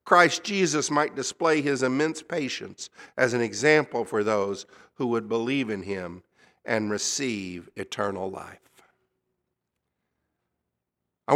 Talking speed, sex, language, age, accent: 115 wpm, male, English, 50-69, American